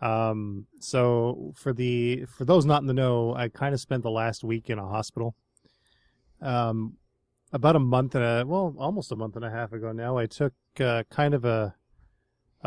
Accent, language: American, English